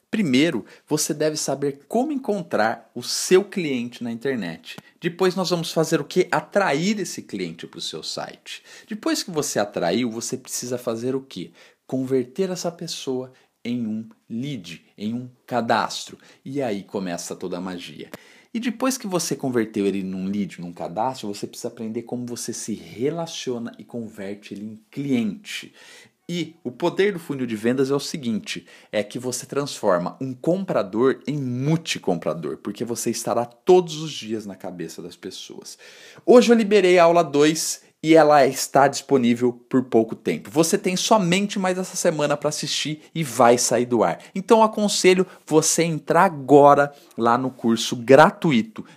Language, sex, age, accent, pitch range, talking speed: Portuguese, male, 50-69, Brazilian, 120-180 Hz, 165 wpm